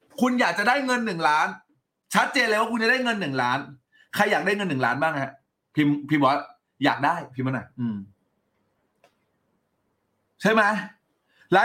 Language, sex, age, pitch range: Thai, male, 30-49, 150-245 Hz